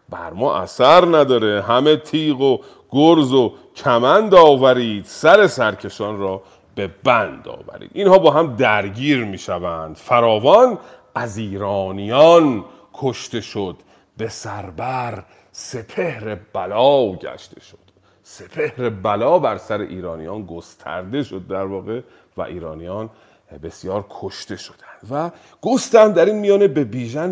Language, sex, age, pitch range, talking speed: Persian, male, 40-59, 105-165 Hz, 120 wpm